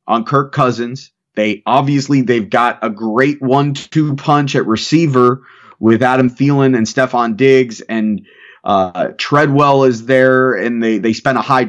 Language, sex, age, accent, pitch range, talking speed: English, male, 30-49, American, 120-140 Hz, 160 wpm